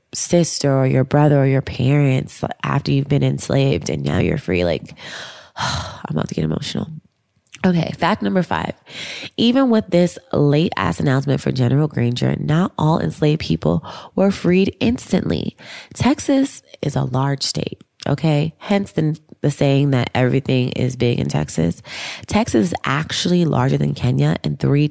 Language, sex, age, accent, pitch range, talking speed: English, female, 20-39, American, 130-180 Hz, 155 wpm